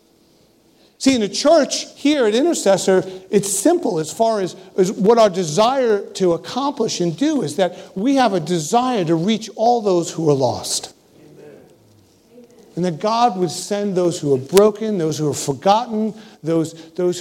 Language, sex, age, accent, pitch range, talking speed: English, male, 50-69, American, 185-245 Hz, 165 wpm